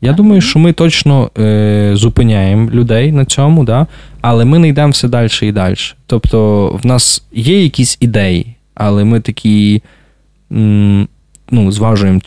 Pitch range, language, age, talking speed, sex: 100-130 Hz, Ukrainian, 20-39, 130 wpm, male